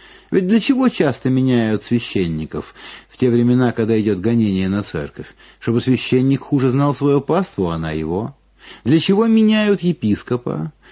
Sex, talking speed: male, 150 wpm